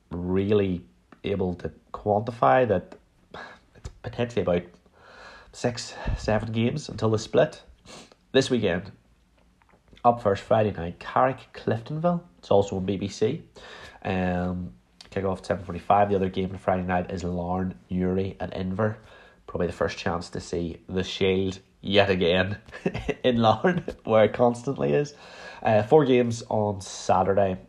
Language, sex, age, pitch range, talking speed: English, male, 30-49, 90-110 Hz, 135 wpm